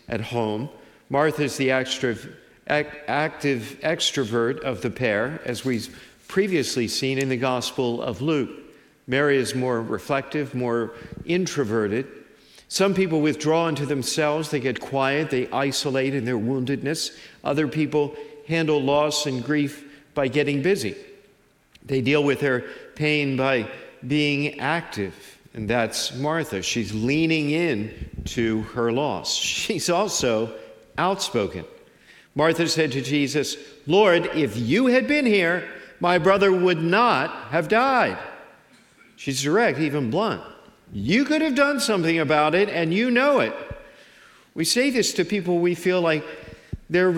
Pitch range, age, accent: 130-170 Hz, 50-69, American